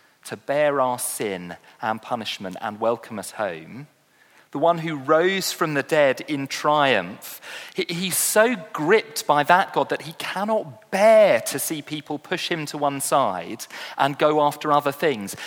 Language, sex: English, male